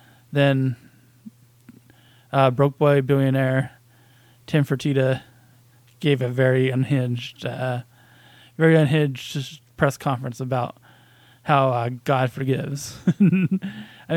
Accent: American